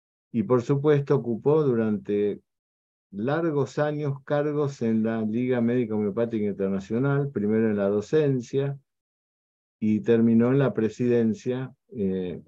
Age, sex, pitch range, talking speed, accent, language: 50-69, male, 105-135 Hz, 115 wpm, Argentinian, Spanish